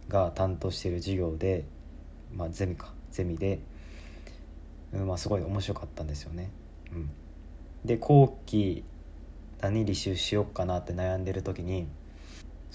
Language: Japanese